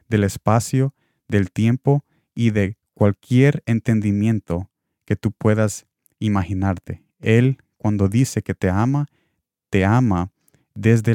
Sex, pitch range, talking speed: male, 100-125 Hz, 115 wpm